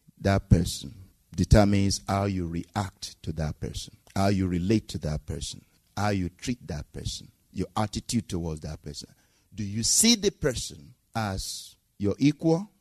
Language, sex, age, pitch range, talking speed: English, male, 50-69, 110-175 Hz, 155 wpm